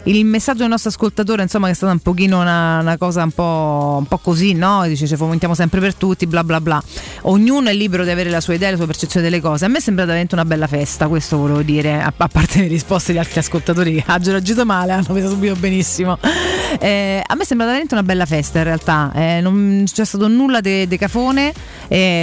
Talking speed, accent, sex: 240 wpm, native, female